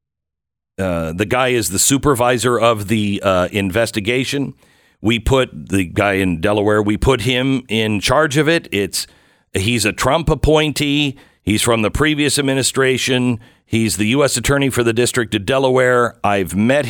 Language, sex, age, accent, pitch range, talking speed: English, male, 50-69, American, 100-135 Hz, 155 wpm